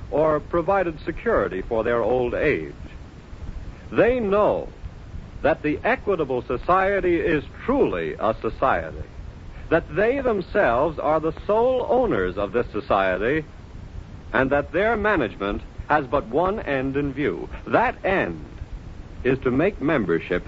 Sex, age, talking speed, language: male, 70-89, 125 wpm, English